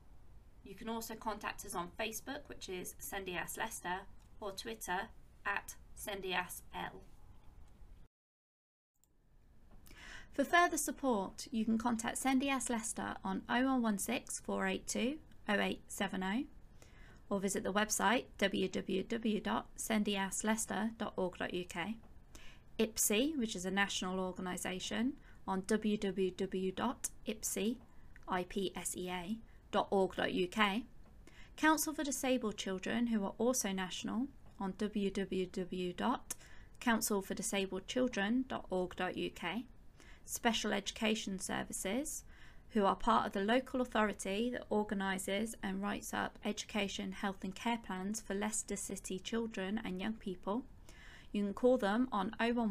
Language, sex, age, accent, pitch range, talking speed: English, female, 20-39, British, 190-230 Hz, 100 wpm